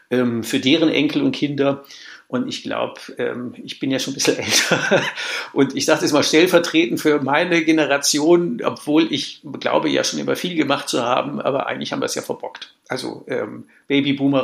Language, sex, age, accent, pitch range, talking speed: German, male, 60-79, German, 125-145 Hz, 185 wpm